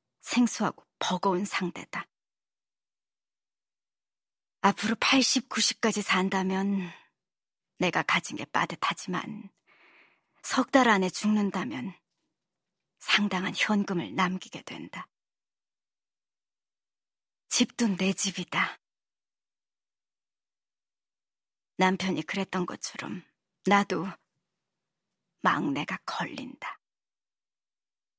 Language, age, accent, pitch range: Korean, 40-59, native, 180-215 Hz